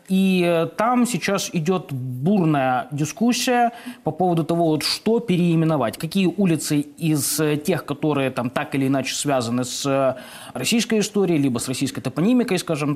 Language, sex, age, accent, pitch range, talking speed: Russian, male, 20-39, native, 140-195 Hz, 140 wpm